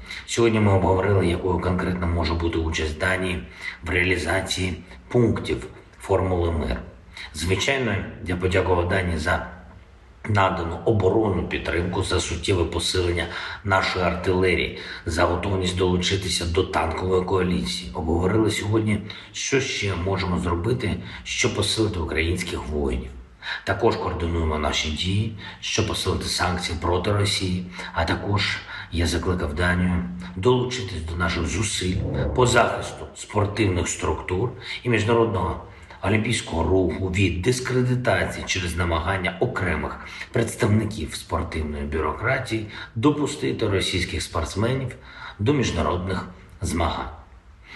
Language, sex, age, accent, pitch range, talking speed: Ukrainian, male, 50-69, native, 85-100 Hz, 105 wpm